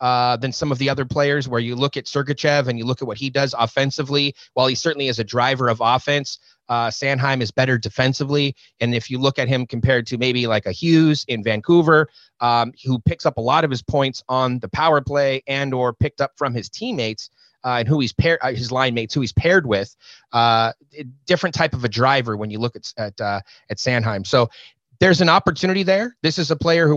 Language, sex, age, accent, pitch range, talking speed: English, male, 30-49, American, 125-150 Hz, 230 wpm